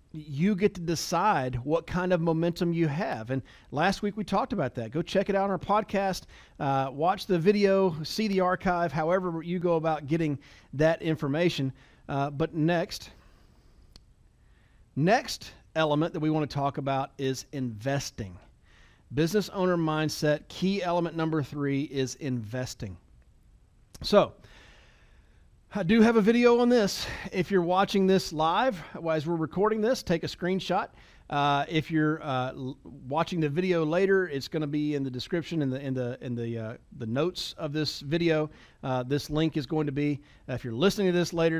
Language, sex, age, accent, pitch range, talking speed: English, male, 40-59, American, 140-180 Hz, 165 wpm